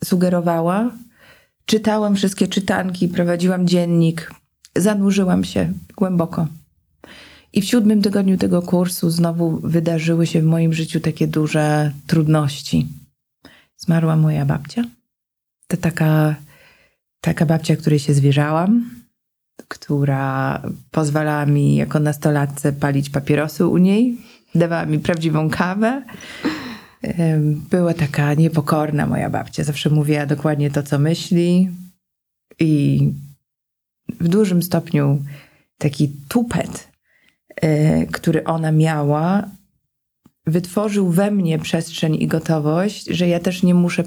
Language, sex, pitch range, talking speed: Polish, female, 150-185 Hz, 105 wpm